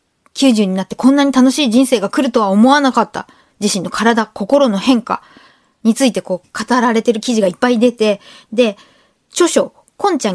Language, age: Japanese, 20-39